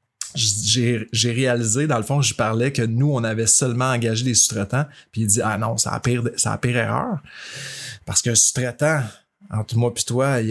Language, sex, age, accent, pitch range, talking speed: French, male, 30-49, Canadian, 115-140 Hz, 225 wpm